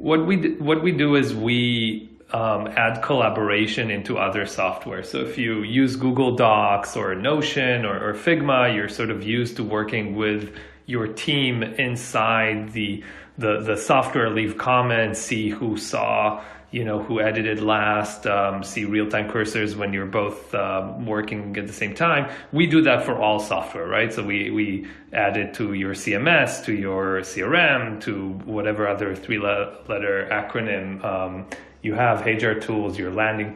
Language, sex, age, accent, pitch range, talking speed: English, male, 30-49, Canadian, 100-125 Hz, 165 wpm